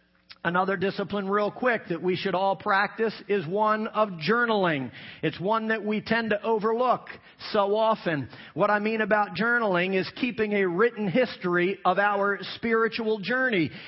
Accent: American